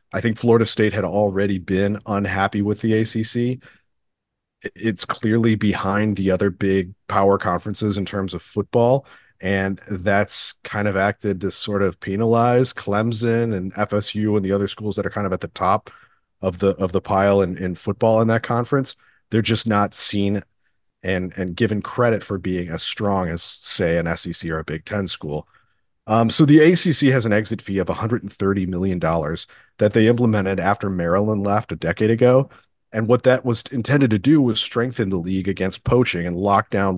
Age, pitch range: 30-49, 95-115 Hz